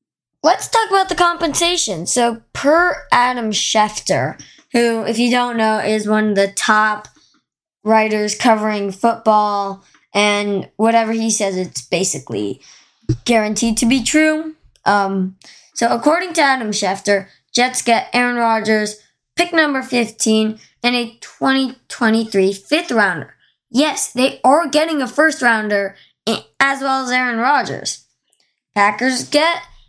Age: 20-39